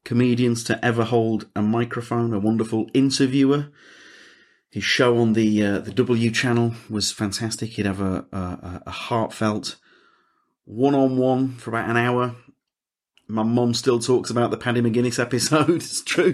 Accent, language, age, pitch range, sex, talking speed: British, English, 30-49, 100-130 Hz, male, 160 wpm